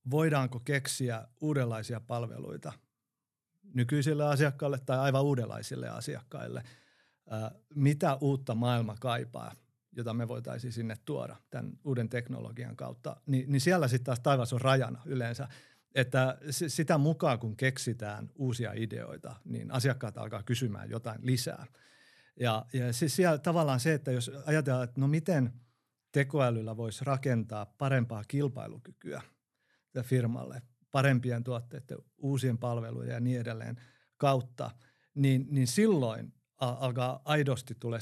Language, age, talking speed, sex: Finnish, 50-69, 120 wpm, male